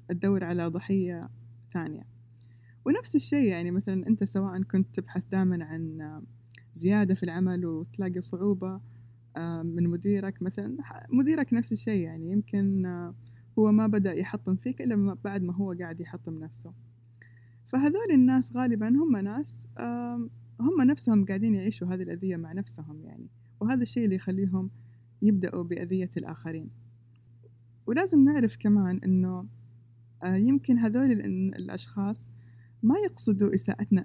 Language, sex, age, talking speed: Persian, female, 20-39, 125 wpm